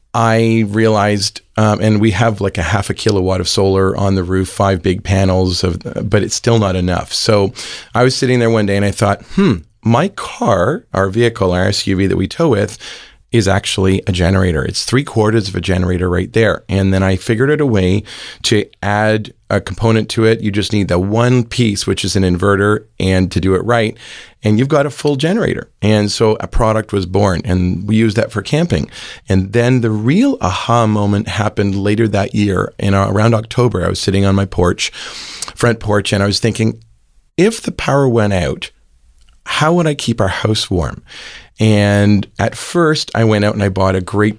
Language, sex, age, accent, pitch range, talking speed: English, male, 40-59, American, 95-115 Hz, 205 wpm